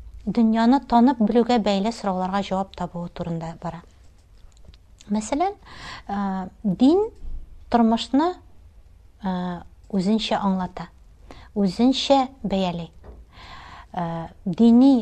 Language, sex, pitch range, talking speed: Russian, female, 180-235 Hz, 70 wpm